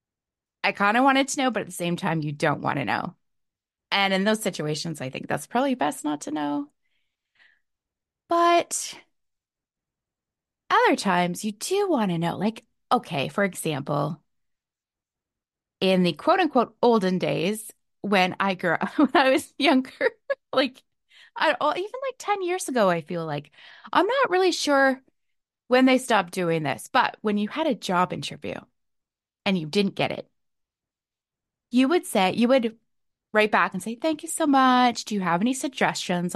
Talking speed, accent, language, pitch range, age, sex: 170 wpm, American, English, 175-255 Hz, 20-39, female